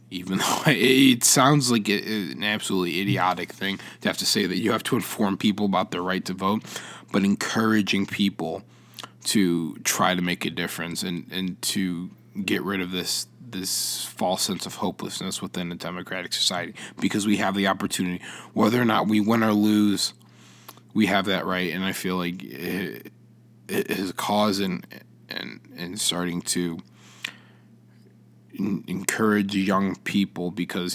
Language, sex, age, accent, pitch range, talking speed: English, male, 20-39, American, 90-105 Hz, 160 wpm